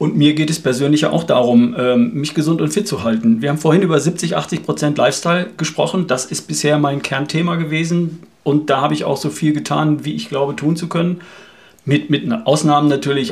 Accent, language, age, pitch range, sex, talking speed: German, German, 40-59, 135-160 Hz, male, 210 wpm